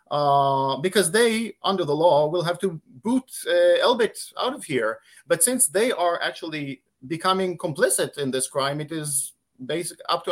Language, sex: English, male